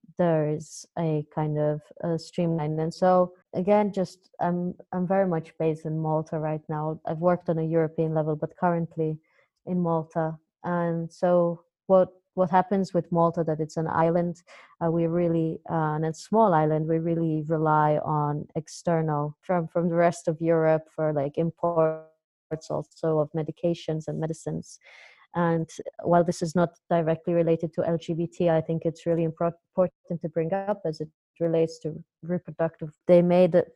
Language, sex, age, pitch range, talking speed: English, female, 30-49, 160-175 Hz, 165 wpm